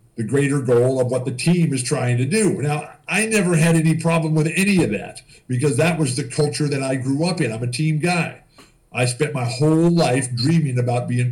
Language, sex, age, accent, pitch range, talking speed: English, male, 50-69, American, 125-160 Hz, 230 wpm